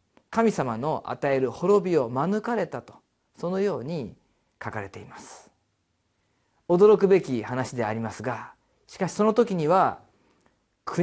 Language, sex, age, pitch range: Japanese, male, 40-59, 120-190 Hz